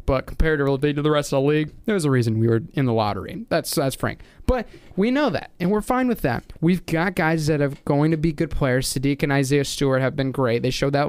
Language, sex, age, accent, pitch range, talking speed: English, male, 20-39, American, 130-160 Hz, 260 wpm